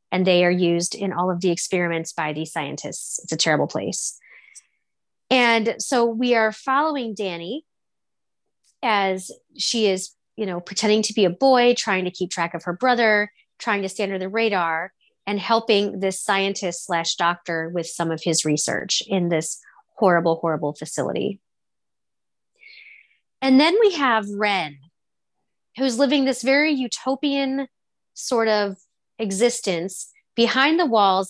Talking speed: 150 wpm